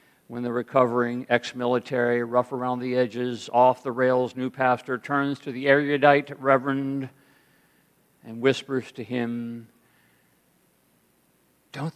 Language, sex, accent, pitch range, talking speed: English, male, American, 120-170 Hz, 115 wpm